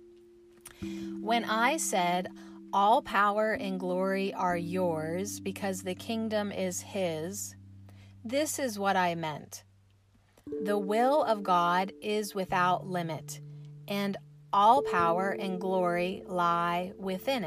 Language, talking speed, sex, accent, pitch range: English, 115 wpm, female, American, 130-205 Hz